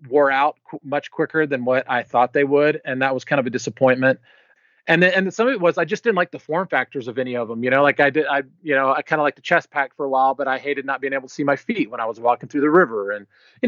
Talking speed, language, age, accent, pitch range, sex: 315 wpm, English, 30-49, American, 125-150 Hz, male